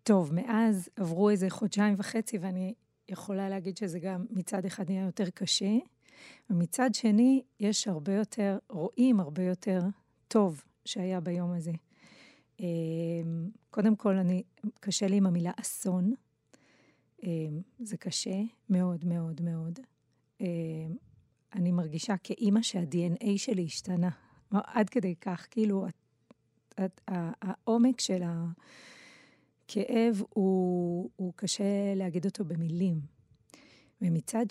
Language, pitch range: Hebrew, 185-225 Hz